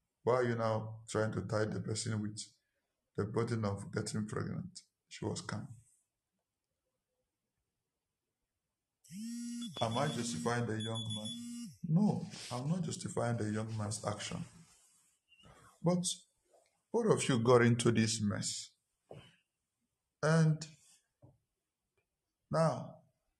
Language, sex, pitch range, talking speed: English, male, 110-135 Hz, 110 wpm